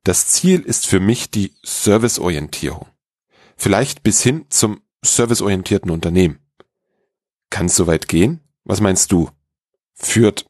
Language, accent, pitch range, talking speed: German, German, 90-125 Hz, 125 wpm